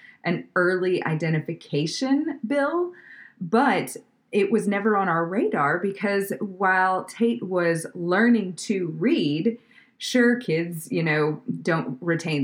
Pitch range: 155-220 Hz